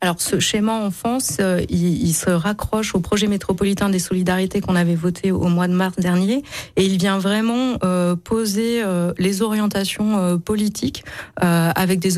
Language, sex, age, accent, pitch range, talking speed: French, female, 30-49, French, 180-205 Hz, 160 wpm